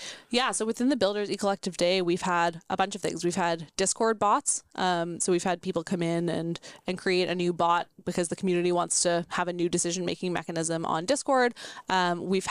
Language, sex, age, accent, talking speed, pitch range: English, female, 20-39, American, 210 wpm, 175-200 Hz